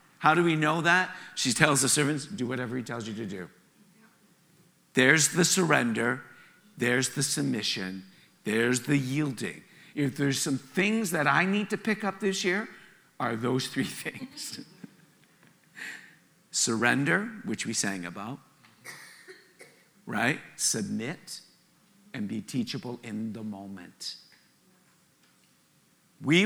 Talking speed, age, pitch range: 125 wpm, 50-69, 125-180 Hz